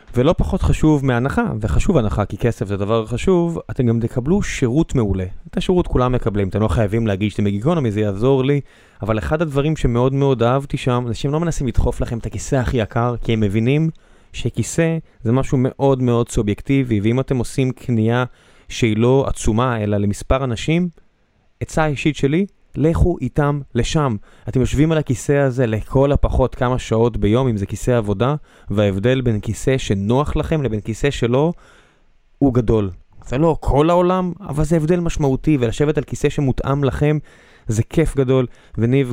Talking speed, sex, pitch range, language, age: 170 wpm, male, 110-140 Hz, Hebrew, 20-39